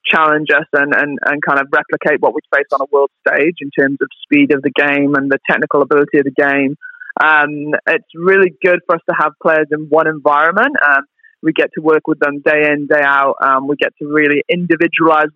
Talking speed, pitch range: 225 wpm, 140-160 Hz